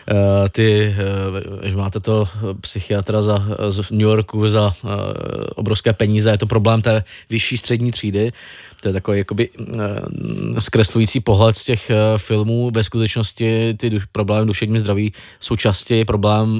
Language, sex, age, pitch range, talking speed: Czech, male, 20-39, 100-115 Hz, 145 wpm